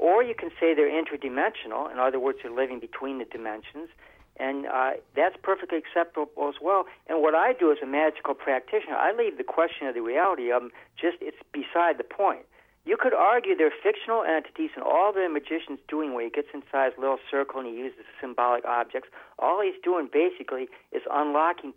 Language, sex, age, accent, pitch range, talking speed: English, male, 50-69, American, 140-225 Hz, 195 wpm